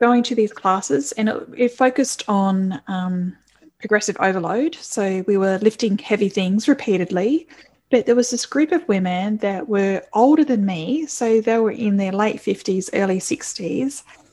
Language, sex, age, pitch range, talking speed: English, female, 10-29, 195-245 Hz, 170 wpm